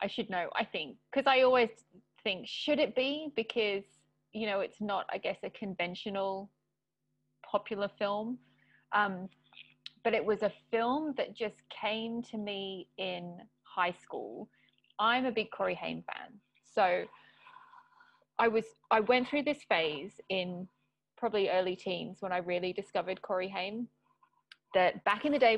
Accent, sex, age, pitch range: British, female, 30-49, 190-230 Hz